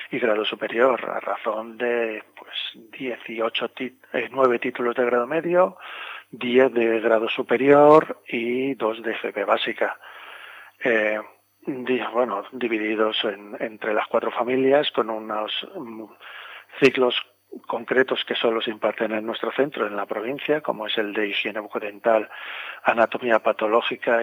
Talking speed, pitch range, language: 135 wpm, 110-135 Hz, English